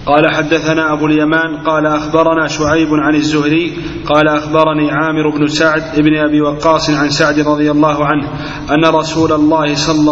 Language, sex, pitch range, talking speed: Arabic, male, 150-155 Hz, 155 wpm